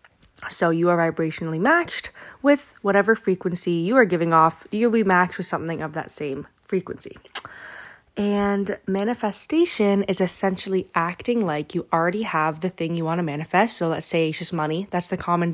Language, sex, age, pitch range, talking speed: English, female, 20-39, 165-195 Hz, 175 wpm